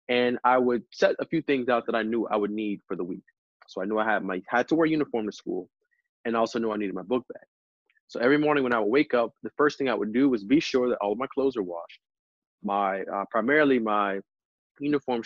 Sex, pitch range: male, 110-135 Hz